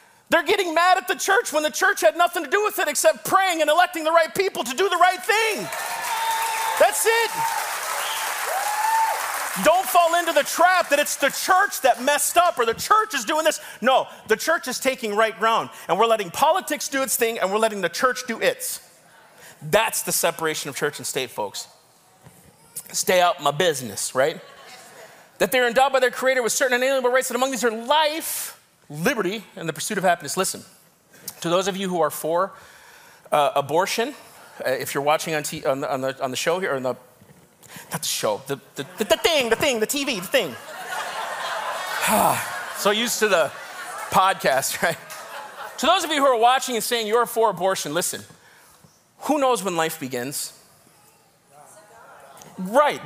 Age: 40-59